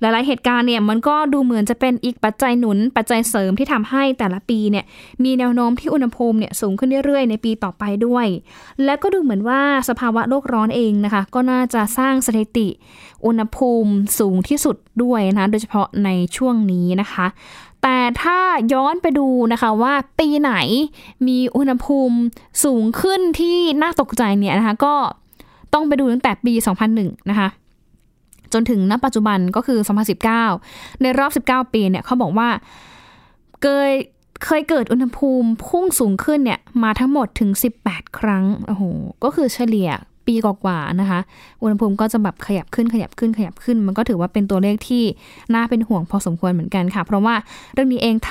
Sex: female